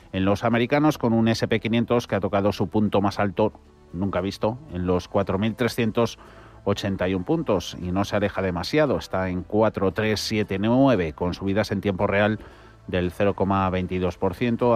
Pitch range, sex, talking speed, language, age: 95-110 Hz, male, 140 wpm, Spanish, 30-49